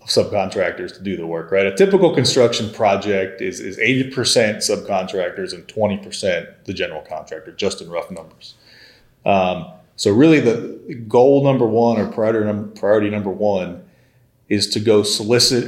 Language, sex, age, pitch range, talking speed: English, male, 30-49, 105-130 Hz, 150 wpm